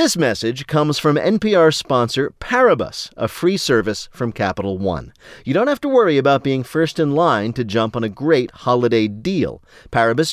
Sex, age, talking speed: male, 40-59, 180 wpm